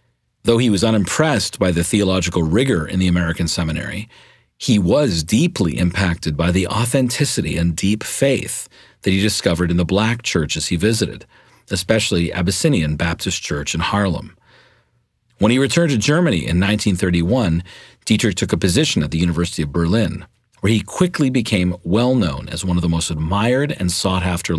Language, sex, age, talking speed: English, male, 40-59, 160 wpm